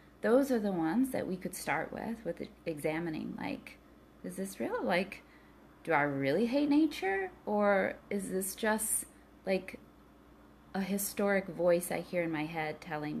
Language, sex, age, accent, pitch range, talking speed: English, female, 30-49, American, 160-220 Hz, 160 wpm